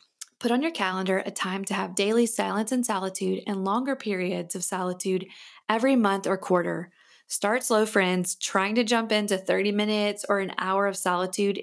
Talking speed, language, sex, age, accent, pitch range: 180 wpm, English, female, 20-39, American, 185-215 Hz